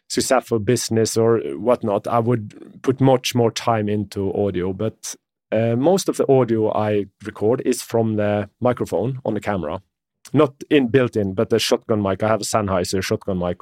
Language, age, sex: English, 30-49, male